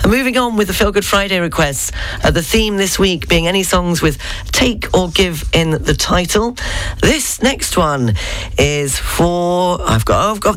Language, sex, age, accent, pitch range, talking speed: English, female, 40-59, British, 140-205 Hz, 195 wpm